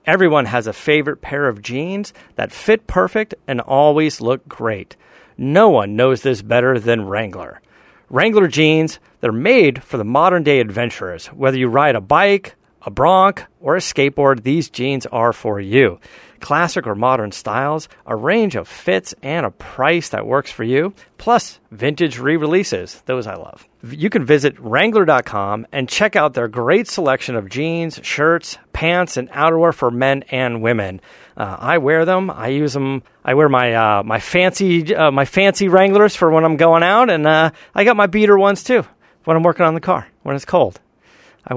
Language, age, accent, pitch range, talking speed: English, 40-59, American, 125-165 Hz, 175 wpm